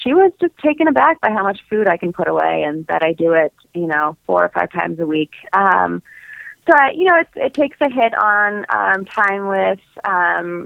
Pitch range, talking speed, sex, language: 170-215 Hz, 225 wpm, female, English